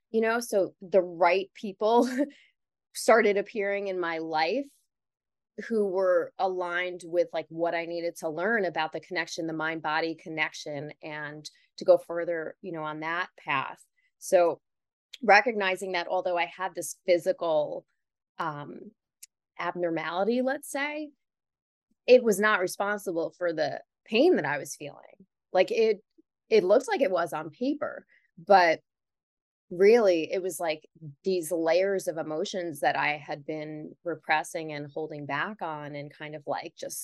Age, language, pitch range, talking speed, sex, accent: 20-39, English, 160-215 Hz, 145 wpm, female, American